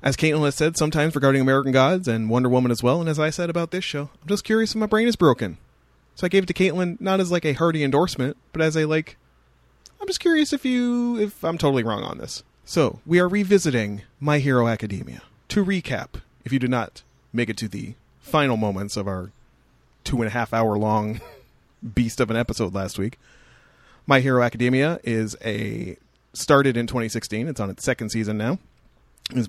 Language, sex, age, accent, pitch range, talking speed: English, male, 30-49, American, 110-145 Hz, 210 wpm